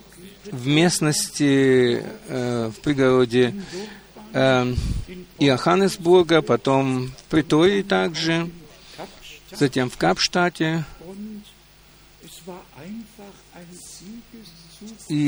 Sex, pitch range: male, 130-185 Hz